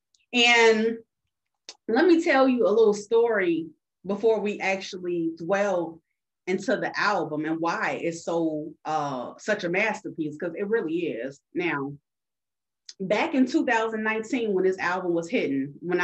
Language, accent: English, American